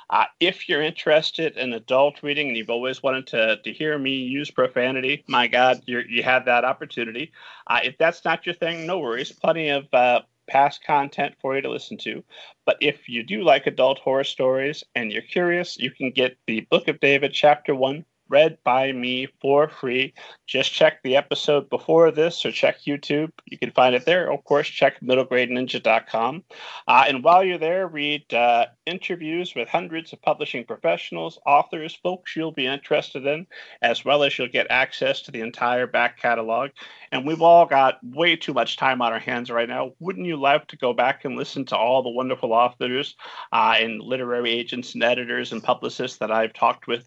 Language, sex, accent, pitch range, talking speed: English, male, American, 125-155 Hz, 190 wpm